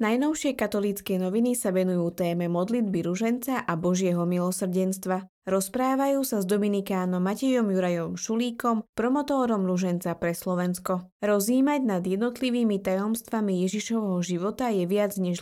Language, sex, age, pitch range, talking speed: Slovak, female, 20-39, 180-230 Hz, 120 wpm